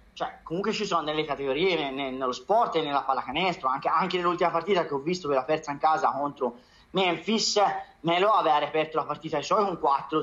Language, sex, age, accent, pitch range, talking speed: Italian, male, 30-49, native, 150-185 Hz, 195 wpm